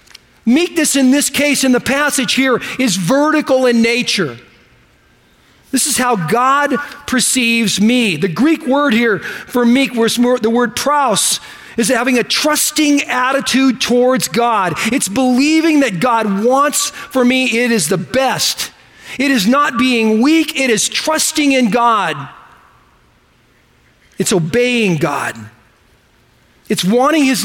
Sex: male